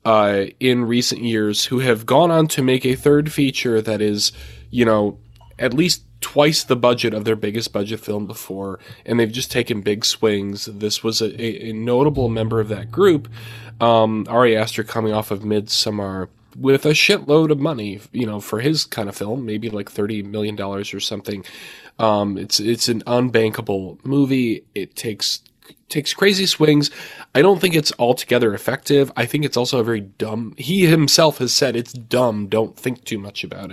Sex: male